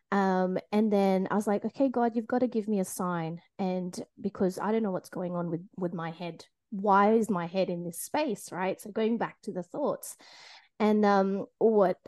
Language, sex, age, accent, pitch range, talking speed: English, female, 20-39, Australian, 190-240 Hz, 220 wpm